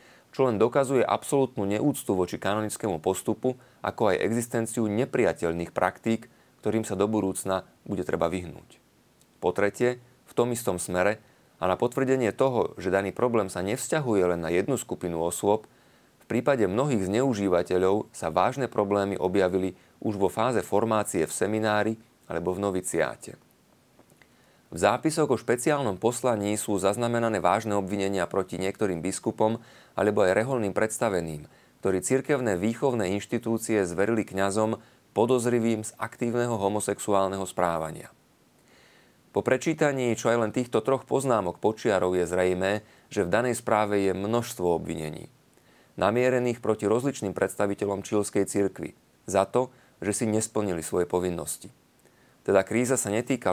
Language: Slovak